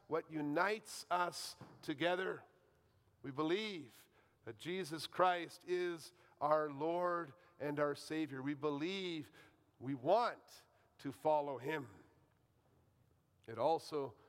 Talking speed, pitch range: 100 wpm, 150-210 Hz